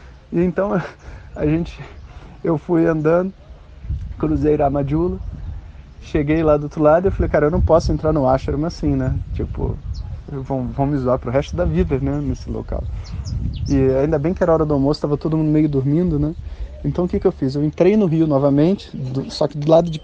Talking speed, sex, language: 205 wpm, male, Portuguese